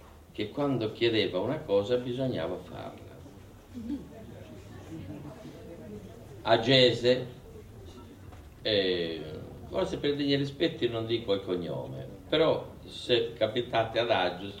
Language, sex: Italian, male